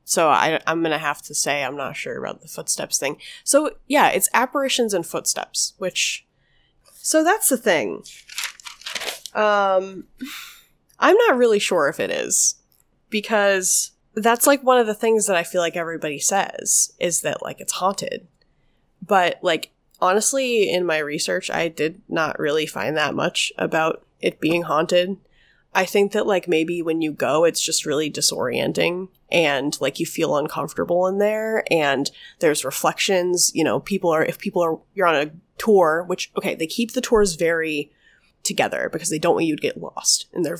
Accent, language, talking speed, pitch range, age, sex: American, English, 175 wpm, 165-225 Hz, 20-39, female